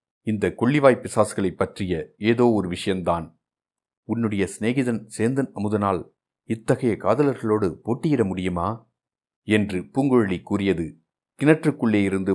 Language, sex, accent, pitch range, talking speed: Tamil, male, native, 95-120 Hz, 85 wpm